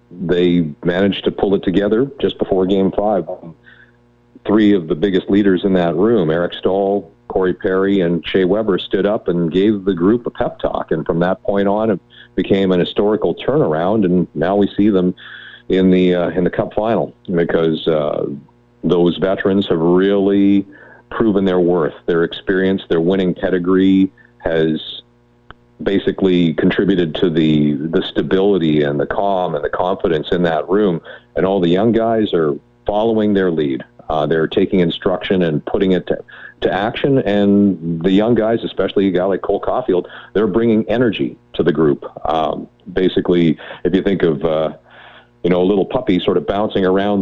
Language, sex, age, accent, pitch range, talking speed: English, male, 50-69, American, 85-100 Hz, 175 wpm